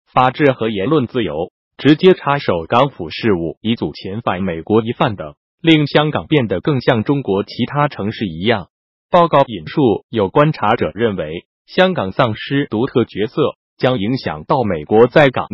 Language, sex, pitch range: Chinese, male, 115-155 Hz